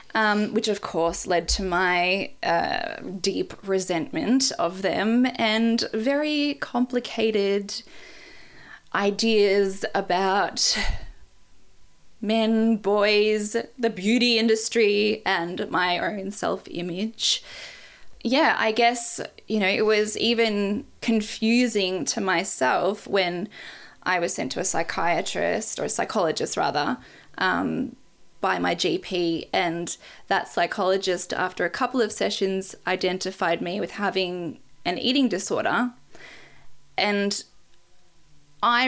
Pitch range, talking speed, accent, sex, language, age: 185-230 Hz, 105 wpm, Australian, female, English, 10-29